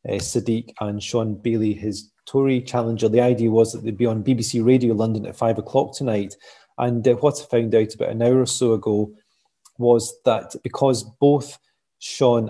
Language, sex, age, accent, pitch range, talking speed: English, male, 30-49, British, 110-125 Hz, 185 wpm